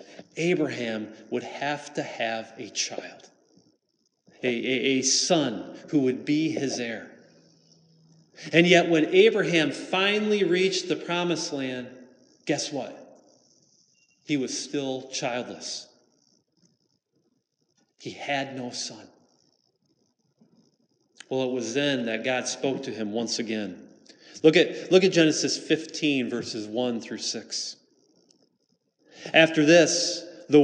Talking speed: 115 wpm